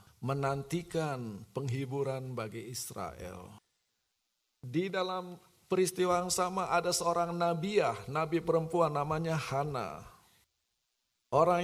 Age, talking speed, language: 50-69, 90 wpm, Indonesian